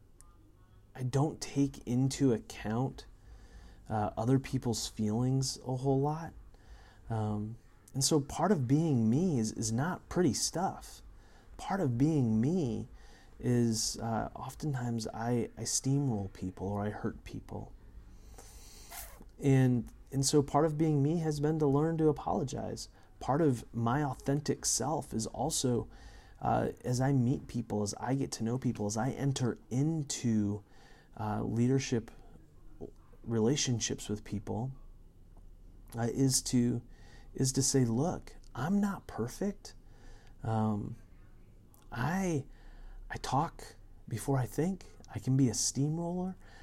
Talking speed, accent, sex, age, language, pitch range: 130 wpm, American, male, 30-49, English, 105-135 Hz